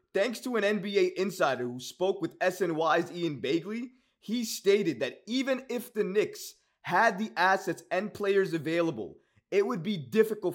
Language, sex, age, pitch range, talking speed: English, male, 20-39, 160-230 Hz, 160 wpm